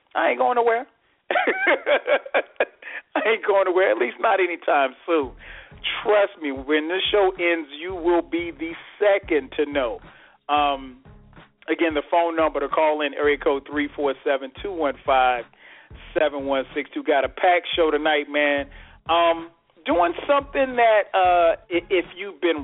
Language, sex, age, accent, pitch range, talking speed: English, male, 40-59, American, 145-190 Hz, 140 wpm